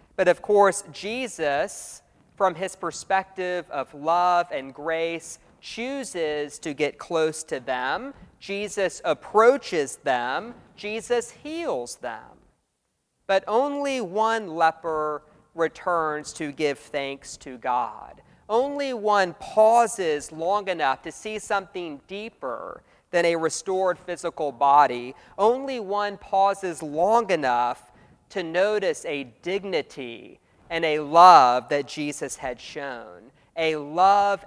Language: English